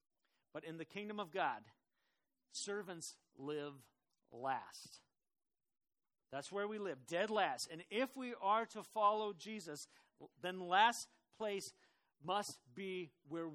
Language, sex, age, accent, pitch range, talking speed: English, male, 50-69, American, 155-210 Hz, 125 wpm